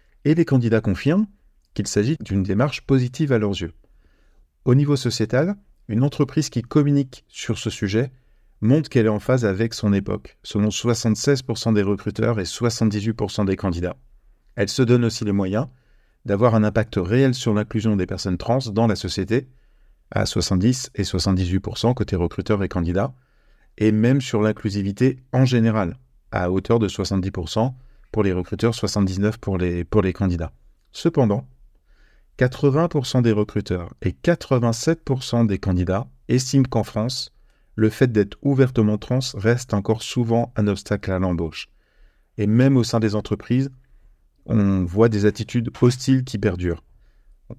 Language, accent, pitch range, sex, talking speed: French, French, 100-125 Hz, male, 150 wpm